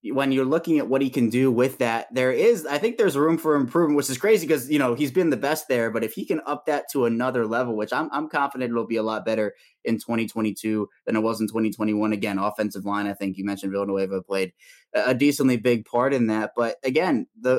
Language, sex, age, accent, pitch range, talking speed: English, male, 20-39, American, 110-130 Hz, 245 wpm